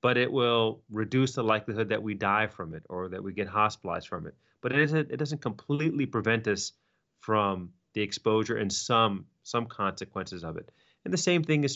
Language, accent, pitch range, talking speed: English, American, 105-125 Hz, 205 wpm